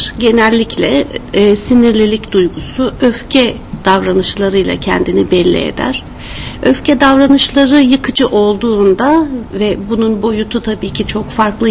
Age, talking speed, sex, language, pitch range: 60-79, 100 wpm, female, Turkish, 200-260 Hz